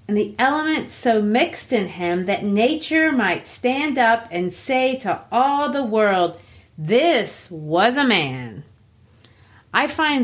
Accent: American